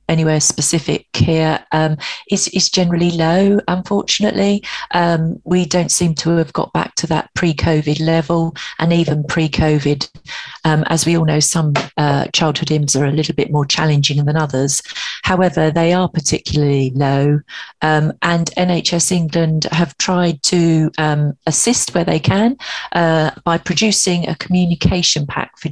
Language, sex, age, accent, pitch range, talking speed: English, female, 40-59, British, 145-170 Hz, 155 wpm